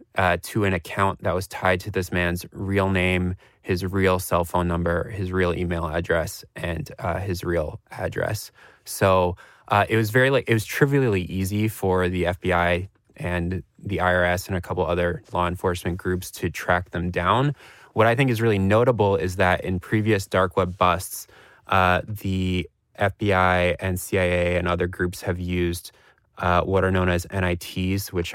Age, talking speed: 20-39, 175 wpm